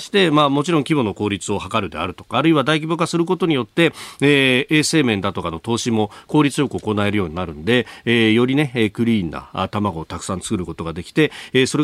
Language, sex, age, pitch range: Japanese, male, 40-59, 100-150 Hz